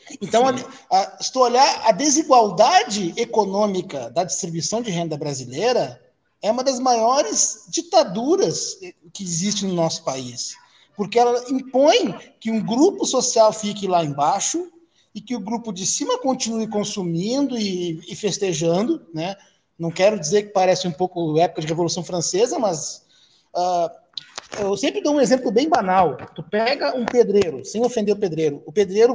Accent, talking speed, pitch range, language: Brazilian, 145 wpm, 175-240 Hz, Portuguese